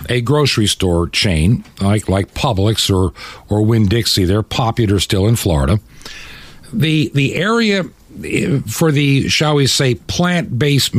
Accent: American